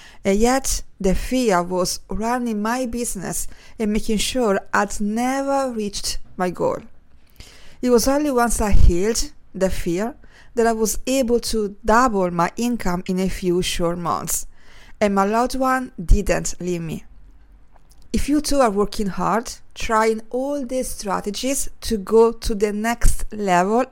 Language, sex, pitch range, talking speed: English, female, 200-245 Hz, 150 wpm